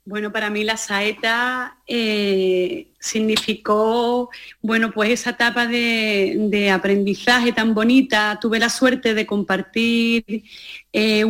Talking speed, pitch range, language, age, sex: 115 wpm, 195-225 Hz, Spanish, 30-49, female